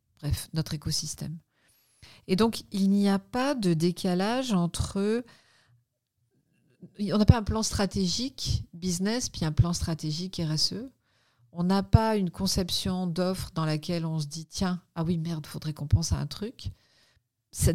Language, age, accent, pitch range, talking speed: French, 40-59, French, 145-185 Hz, 155 wpm